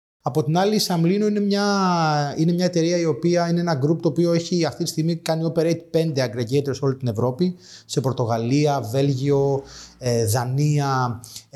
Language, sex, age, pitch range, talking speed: Greek, male, 30-49, 125-150 Hz, 165 wpm